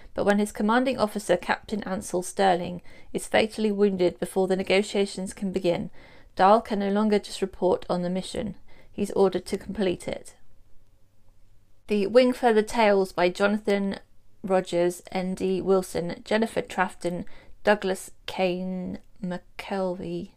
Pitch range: 175-200 Hz